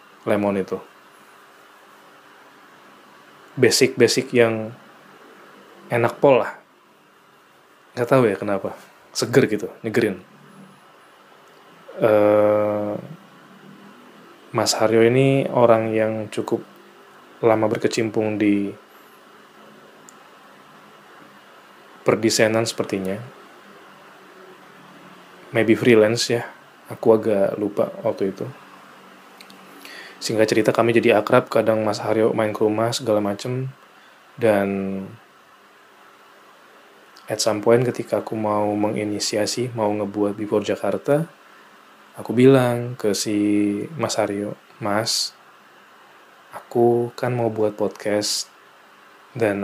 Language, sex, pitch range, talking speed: Indonesian, male, 105-115 Hz, 85 wpm